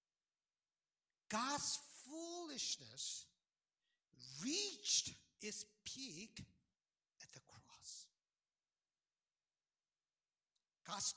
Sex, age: male, 60-79